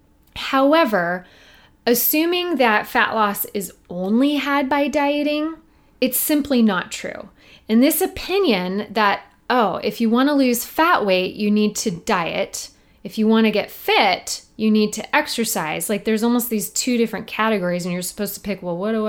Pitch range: 200-255 Hz